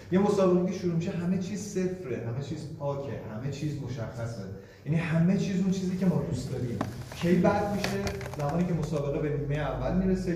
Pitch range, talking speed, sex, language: 120-160 Hz, 185 wpm, male, Persian